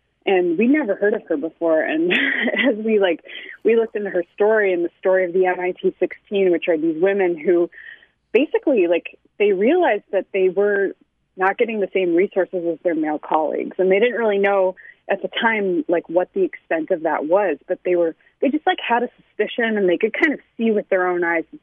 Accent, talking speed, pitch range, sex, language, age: American, 215 wpm, 175-245 Hz, female, English, 20-39